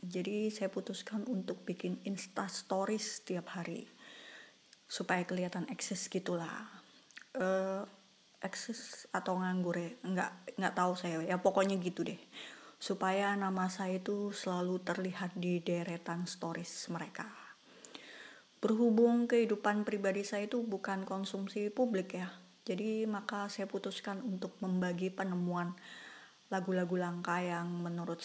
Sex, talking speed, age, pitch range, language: female, 115 wpm, 20-39, 180-210 Hz, Indonesian